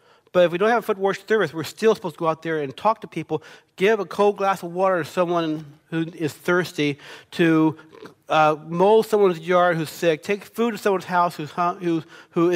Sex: male